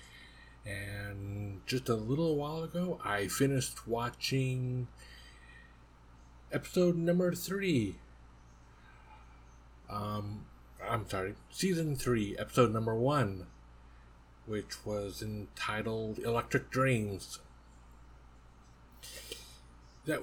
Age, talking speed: 50-69, 75 wpm